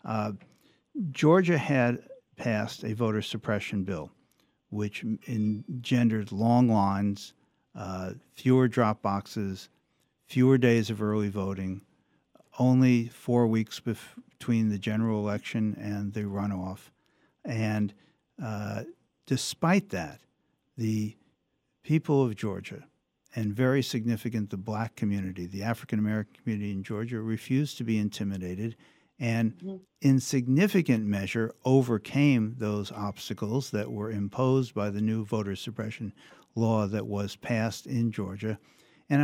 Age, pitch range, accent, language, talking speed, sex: 60-79, 105-130 Hz, American, English, 115 wpm, male